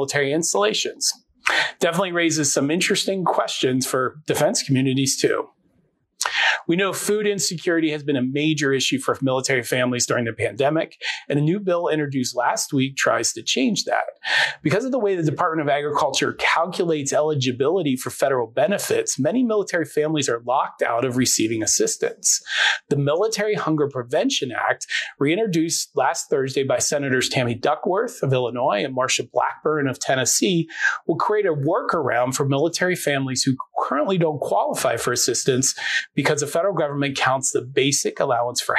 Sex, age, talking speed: male, 30-49, 155 wpm